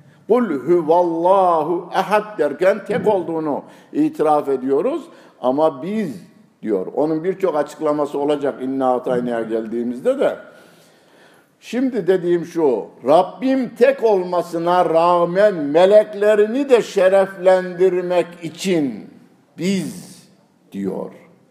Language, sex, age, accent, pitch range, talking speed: Turkish, male, 60-79, native, 135-190 Hz, 85 wpm